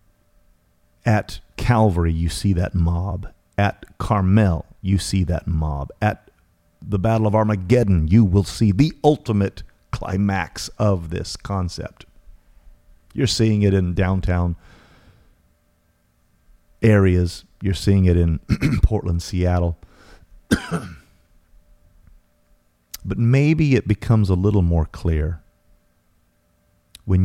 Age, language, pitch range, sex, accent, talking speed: 40-59, English, 85-100 Hz, male, American, 105 wpm